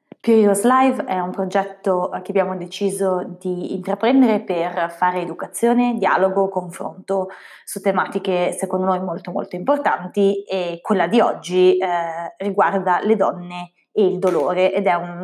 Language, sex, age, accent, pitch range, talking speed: Italian, female, 20-39, native, 180-205 Hz, 140 wpm